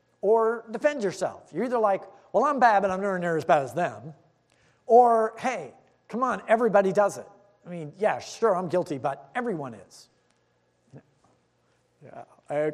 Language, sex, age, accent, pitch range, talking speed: English, male, 50-69, American, 150-250 Hz, 160 wpm